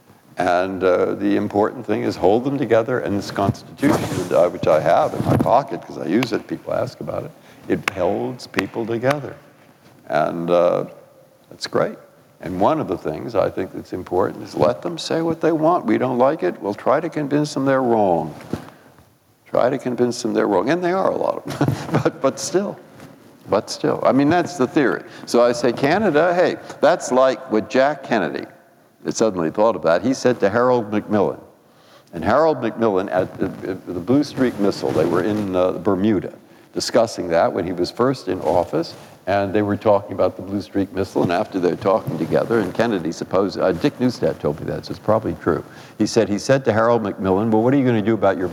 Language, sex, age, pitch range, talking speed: English, male, 60-79, 95-135 Hz, 210 wpm